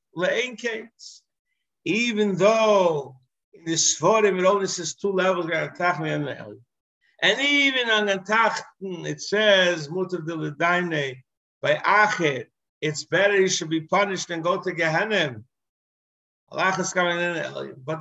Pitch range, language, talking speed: 165-220 Hz, English, 105 wpm